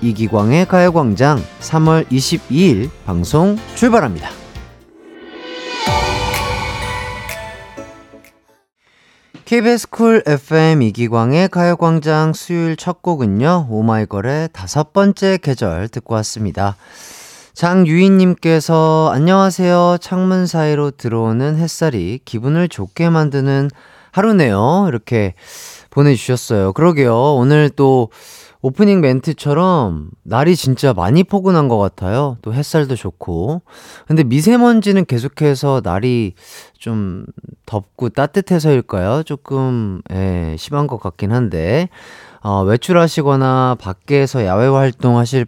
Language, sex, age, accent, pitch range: Korean, male, 40-59, native, 110-165 Hz